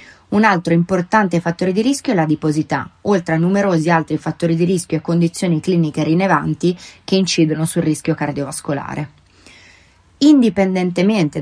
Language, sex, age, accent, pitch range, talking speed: Italian, female, 30-49, native, 160-190 Hz, 135 wpm